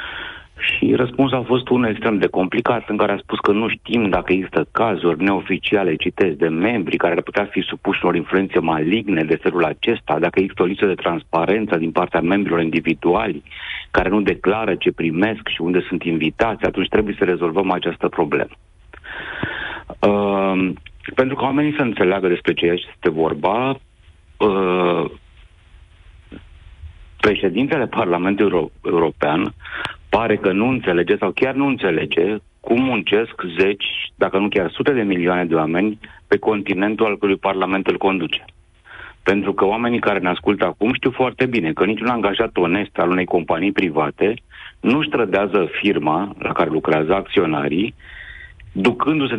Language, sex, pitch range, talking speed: Romanian, male, 90-115 Hz, 150 wpm